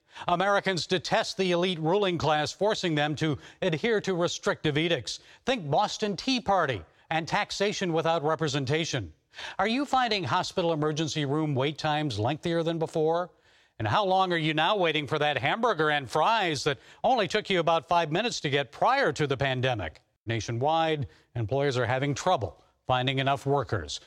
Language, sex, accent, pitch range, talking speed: English, male, American, 145-190 Hz, 160 wpm